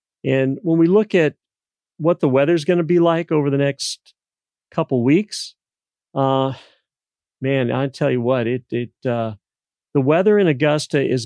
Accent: American